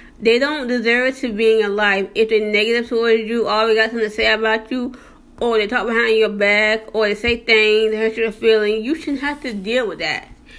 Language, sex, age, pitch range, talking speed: English, female, 20-39, 215-275 Hz, 230 wpm